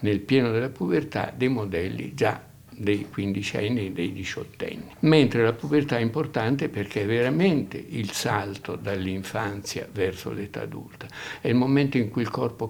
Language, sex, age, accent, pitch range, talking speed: Italian, male, 60-79, native, 100-125 Hz, 160 wpm